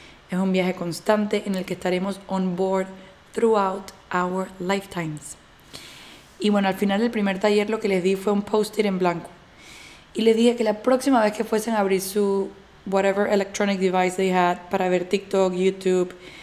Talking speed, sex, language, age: 185 wpm, female, Spanish, 20-39